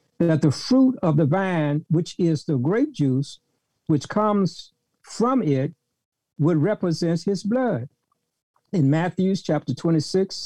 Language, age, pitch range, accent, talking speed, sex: English, 60-79, 145-190 Hz, American, 130 wpm, male